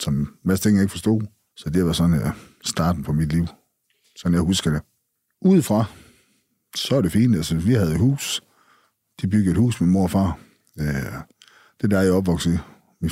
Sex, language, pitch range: male, Danish, 85-105 Hz